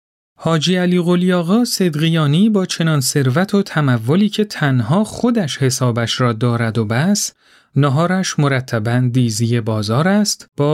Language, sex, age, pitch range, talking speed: Persian, male, 40-59, 125-175 Hz, 130 wpm